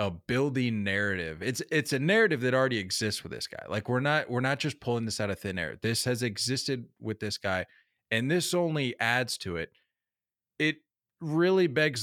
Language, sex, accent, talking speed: English, male, American, 200 wpm